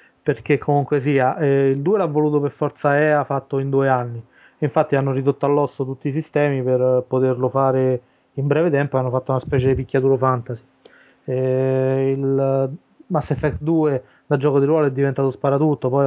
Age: 20-39